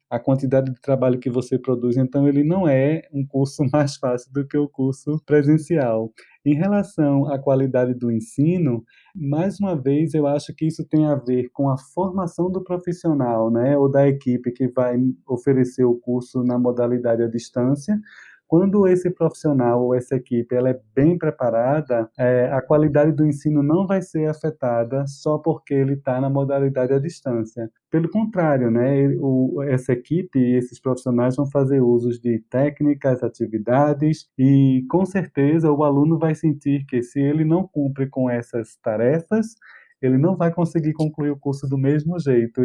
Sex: male